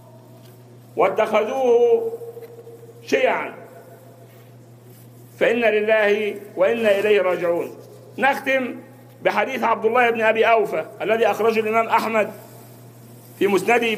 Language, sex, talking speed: English, male, 85 wpm